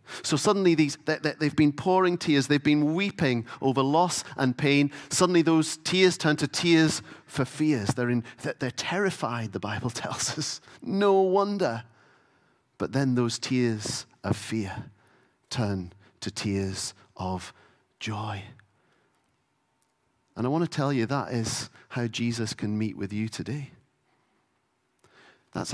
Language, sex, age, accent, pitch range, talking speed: English, male, 40-59, British, 120-170 Hz, 140 wpm